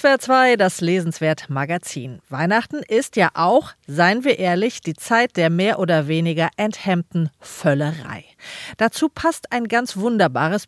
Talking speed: 135 wpm